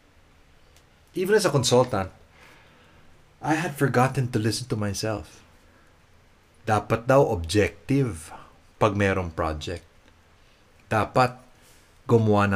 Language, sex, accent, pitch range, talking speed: English, male, Filipino, 85-120 Hz, 85 wpm